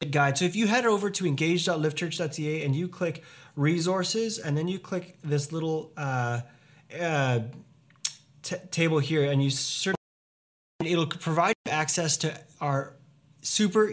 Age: 20-39